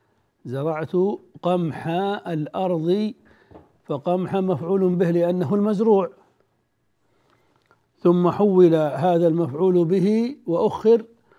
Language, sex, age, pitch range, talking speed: Arabic, male, 60-79, 160-195 Hz, 75 wpm